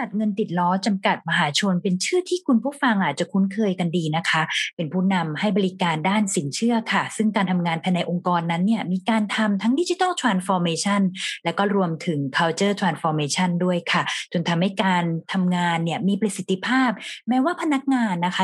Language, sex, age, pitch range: Thai, female, 20-39, 165-210 Hz